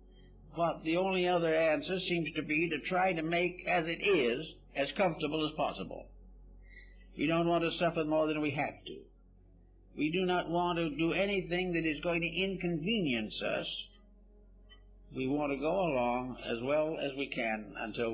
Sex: male